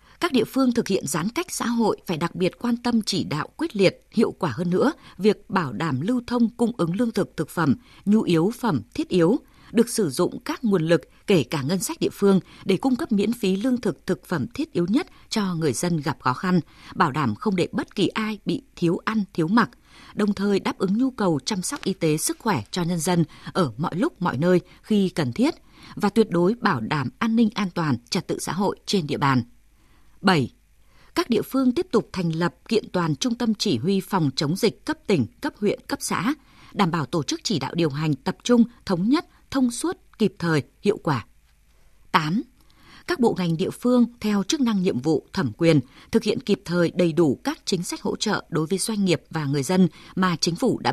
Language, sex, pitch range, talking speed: Vietnamese, female, 170-230 Hz, 230 wpm